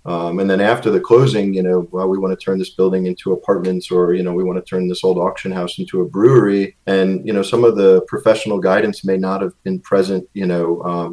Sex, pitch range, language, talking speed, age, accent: male, 90-105 Hz, English, 255 wpm, 30-49, American